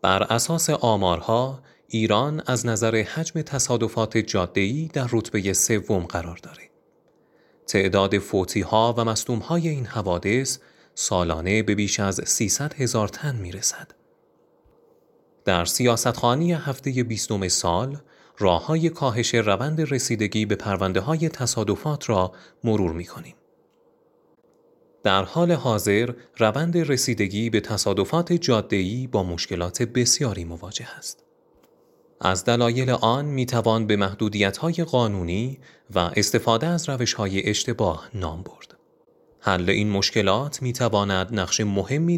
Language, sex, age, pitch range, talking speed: Persian, male, 30-49, 100-130 Hz, 110 wpm